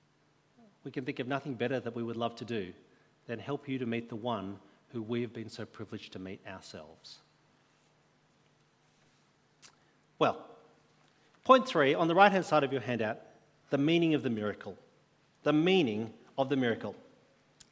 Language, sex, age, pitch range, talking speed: English, male, 40-59, 120-170 Hz, 165 wpm